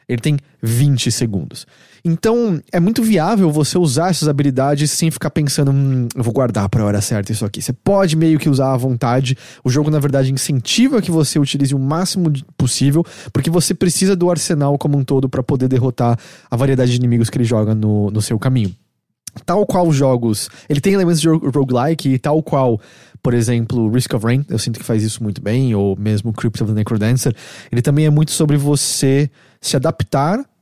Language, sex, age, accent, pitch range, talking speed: English, male, 20-39, Brazilian, 125-160 Hz, 200 wpm